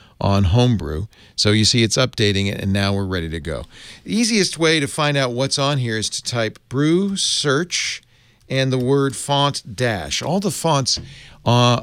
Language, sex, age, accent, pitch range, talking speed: English, male, 40-59, American, 100-135 Hz, 185 wpm